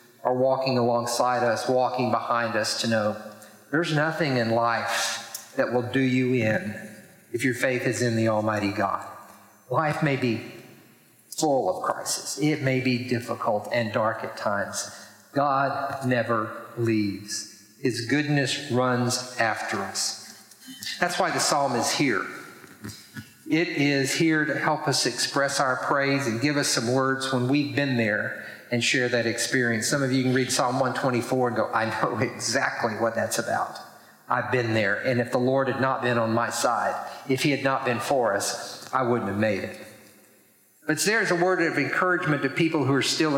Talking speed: 175 wpm